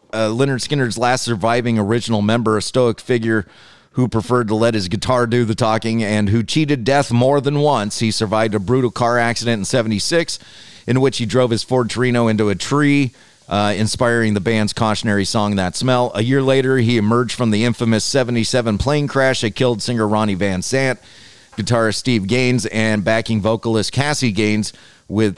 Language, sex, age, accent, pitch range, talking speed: English, male, 30-49, American, 105-130 Hz, 185 wpm